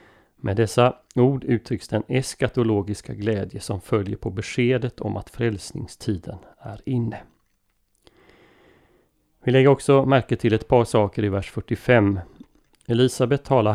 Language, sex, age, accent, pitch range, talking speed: Swedish, male, 40-59, native, 100-120 Hz, 125 wpm